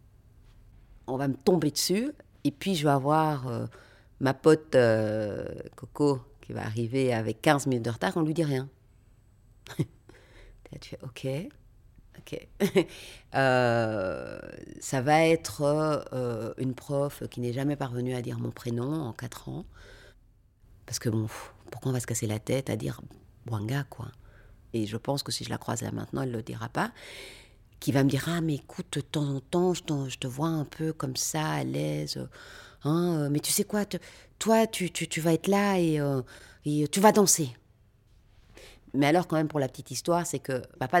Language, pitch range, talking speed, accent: French, 115-165 Hz, 195 wpm, French